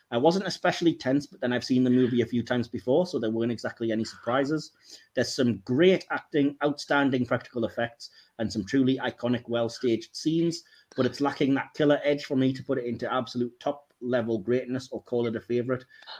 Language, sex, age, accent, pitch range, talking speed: English, male, 30-49, British, 125-175 Hz, 195 wpm